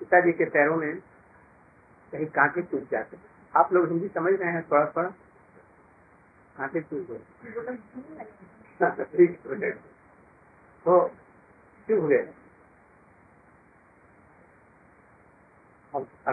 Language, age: Hindi, 60-79